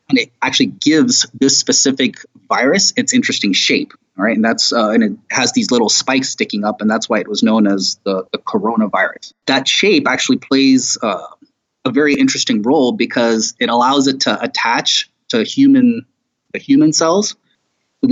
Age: 30-49